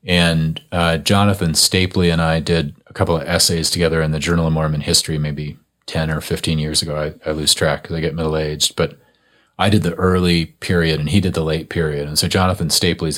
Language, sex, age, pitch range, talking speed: English, male, 30-49, 80-90 Hz, 220 wpm